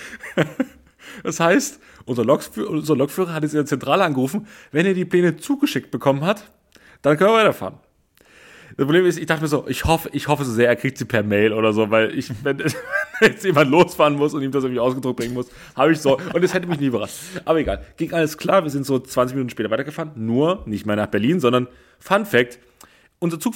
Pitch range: 120-170 Hz